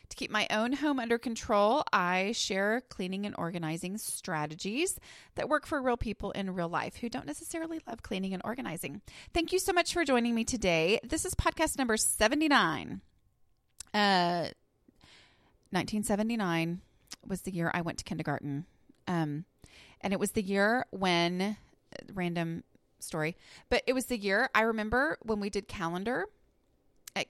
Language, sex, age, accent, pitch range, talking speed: English, female, 30-49, American, 170-240 Hz, 155 wpm